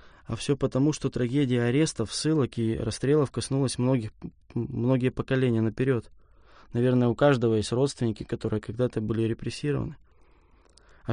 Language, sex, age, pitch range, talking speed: Russian, male, 20-39, 115-135 Hz, 130 wpm